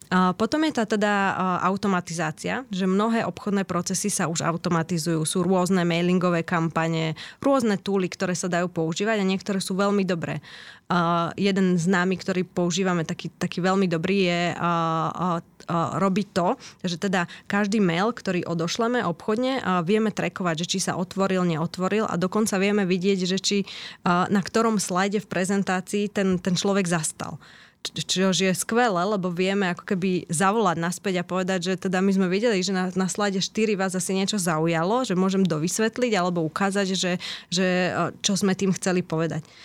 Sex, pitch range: female, 175-205 Hz